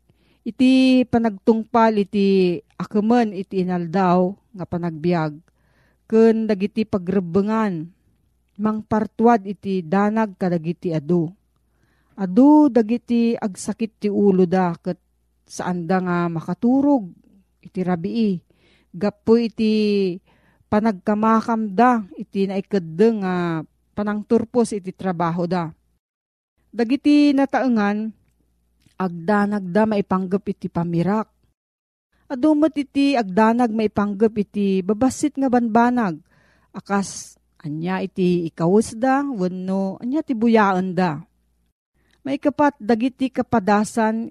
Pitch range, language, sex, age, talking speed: 185-230 Hz, Filipino, female, 40-59, 90 wpm